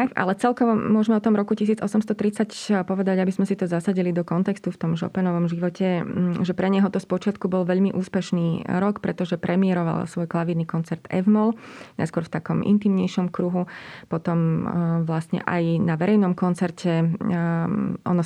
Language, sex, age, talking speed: Slovak, female, 20-39, 150 wpm